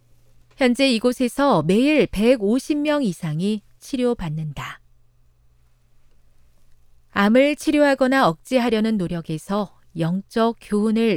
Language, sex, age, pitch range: Korean, female, 40-59, 155-245 Hz